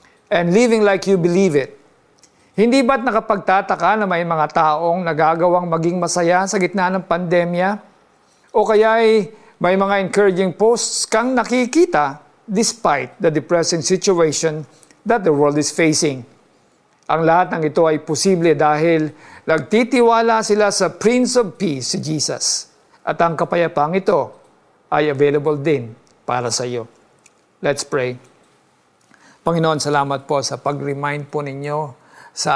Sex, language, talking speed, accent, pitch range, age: male, Filipino, 135 wpm, native, 145-185 Hz, 50-69